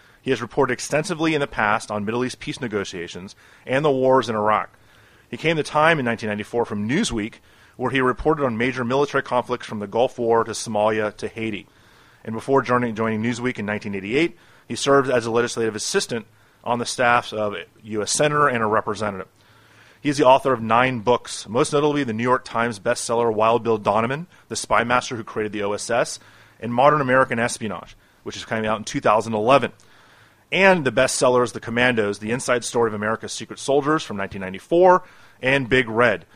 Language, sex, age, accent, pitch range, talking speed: English, male, 30-49, American, 110-130 Hz, 185 wpm